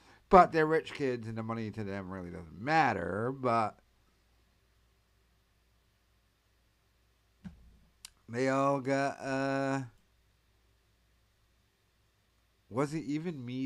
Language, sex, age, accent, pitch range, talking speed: English, male, 50-69, American, 100-135 Hz, 90 wpm